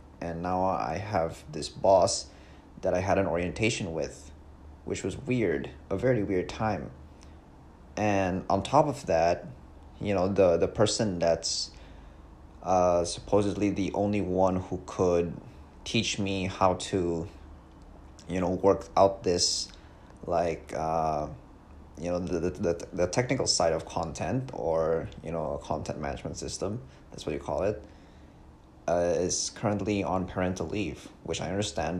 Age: 30-49